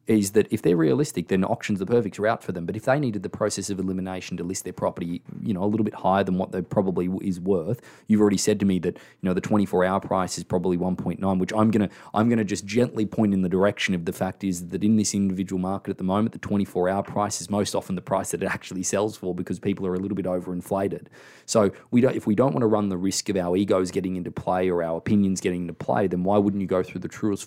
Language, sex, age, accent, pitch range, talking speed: English, male, 20-39, Australian, 95-110 Hz, 275 wpm